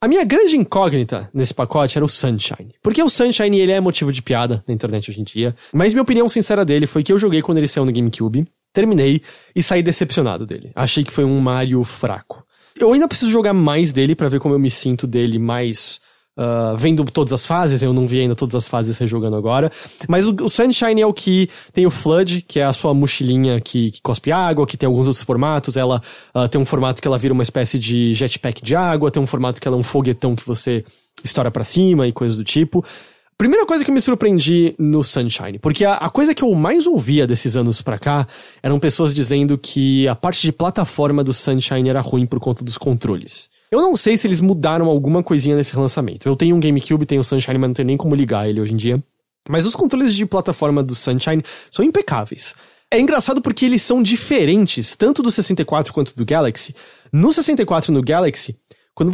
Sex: male